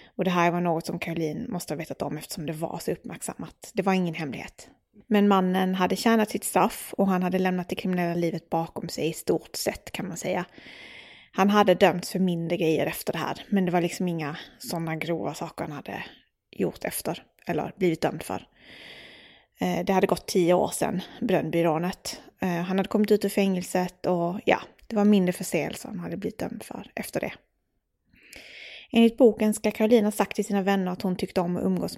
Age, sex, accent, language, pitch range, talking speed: 20-39, female, native, Swedish, 170-195 Hz, 200 wpm